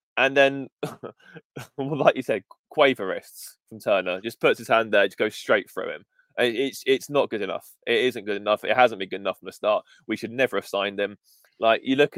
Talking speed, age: 215 wpm, 20-39